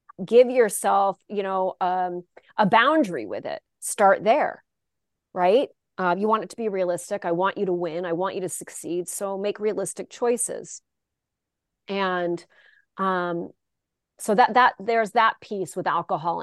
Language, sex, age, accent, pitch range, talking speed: English, female, 30-49, American, 175-225 Hz, 155 wpm